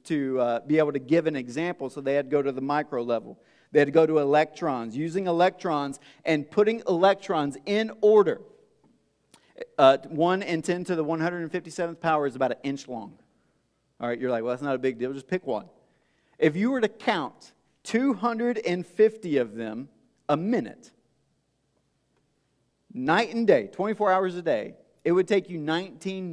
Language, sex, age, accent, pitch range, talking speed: English, male, 40-59, American, 130-180 Hz, 180 wpm